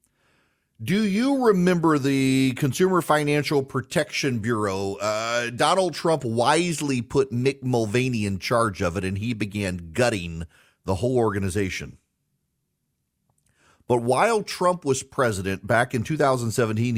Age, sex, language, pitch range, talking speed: 40-59, male, English, 110-150 Hz, 120 wpm